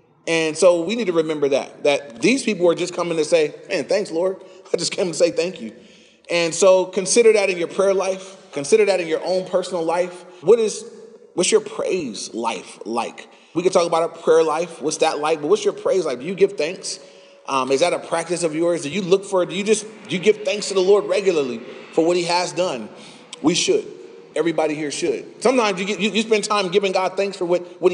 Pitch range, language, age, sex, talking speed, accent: 155-205 Hz, English, 30-49, male, 240 wpm, American